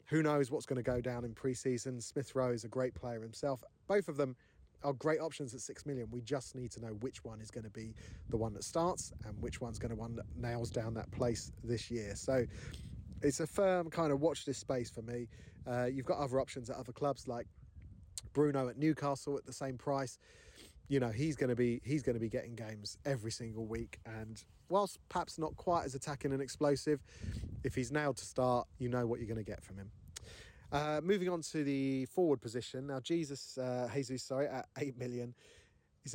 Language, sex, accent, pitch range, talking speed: English, male, British, 115-145 Hz, 220 wpm